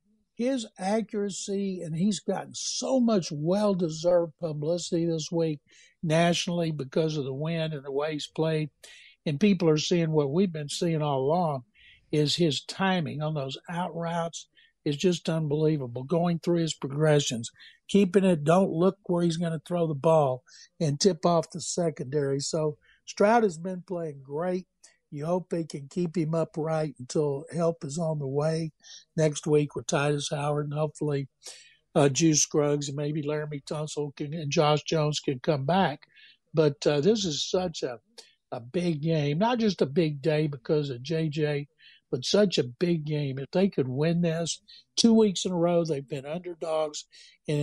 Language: English